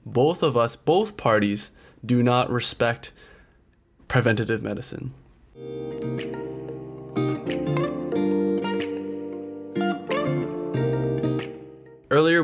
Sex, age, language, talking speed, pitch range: male, 20-39, English, 55 wpm, 110-130 Hz